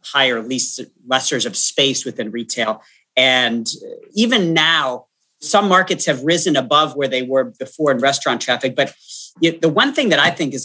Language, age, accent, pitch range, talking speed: English, 40-59, American, 135-175 Hz, 170 wpm